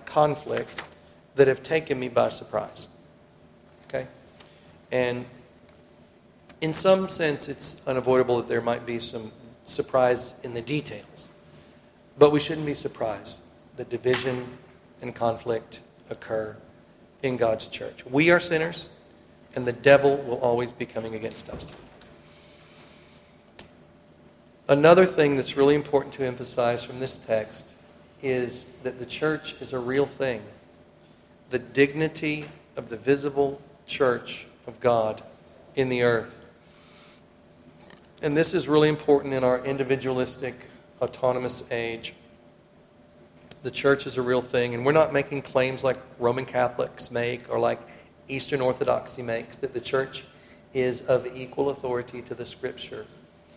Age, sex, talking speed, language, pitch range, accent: 40-59, male, 130 wpm, English, 120-140 Hz, American